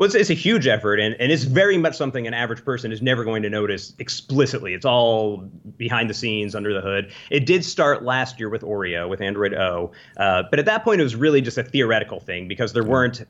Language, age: English, 30-49